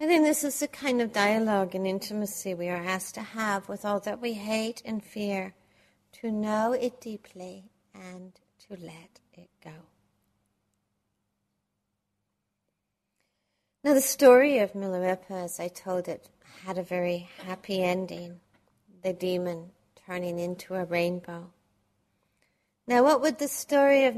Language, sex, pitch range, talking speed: English, female, 180-225 Hz, 140 wpm